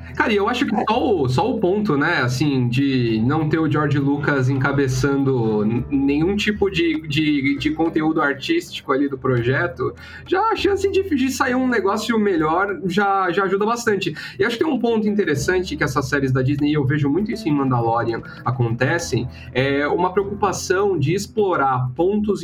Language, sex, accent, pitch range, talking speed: Portuguese, male, Brazilian, 140-210 Hz, 180 wpm